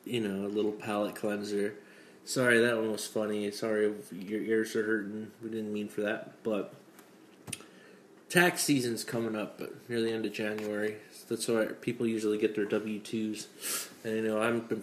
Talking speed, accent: 180 wpm, American